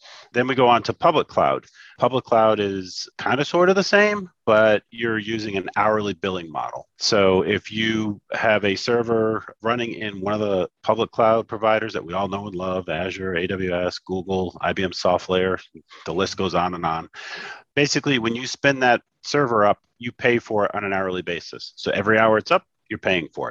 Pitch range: 95-115 Hz